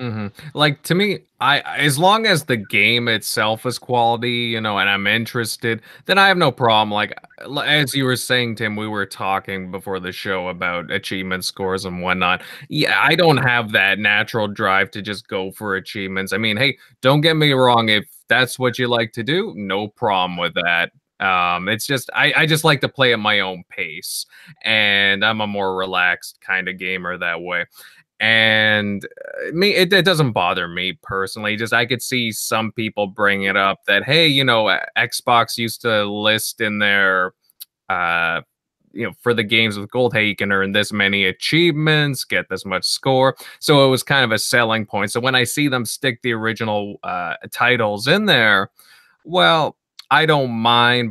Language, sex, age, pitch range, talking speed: English, male, 20-39, 100-130 Hz, 190 wpm